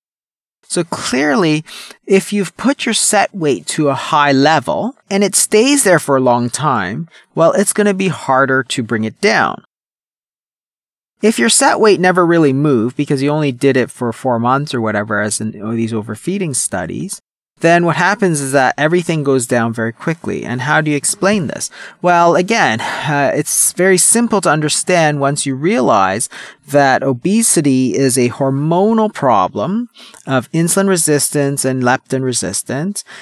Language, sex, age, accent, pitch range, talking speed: English, male, 30-49, American, 130-185 Hz, 165 wpm